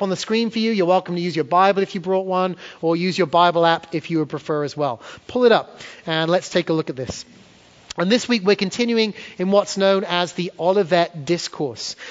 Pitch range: 170-205 Hz